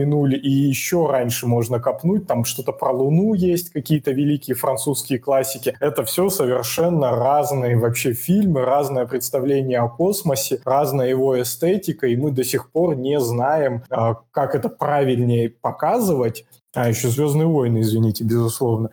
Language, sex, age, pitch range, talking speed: Russian, male, 20-39, 125-160 Hz, 140 wpm